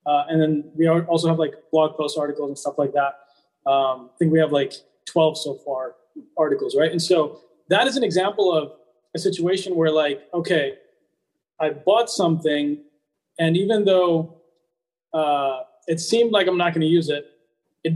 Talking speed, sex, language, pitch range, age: 175 wpm, male, English, 155-195 Hz, 20-39